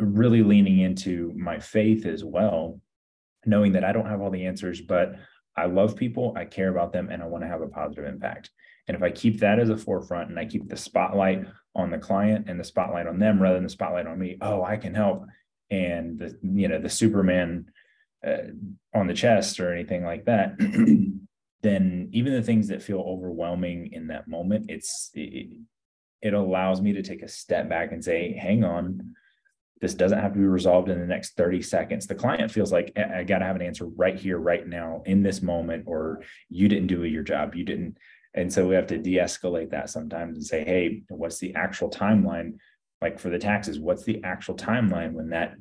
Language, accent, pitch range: English, American, 90-105 Hz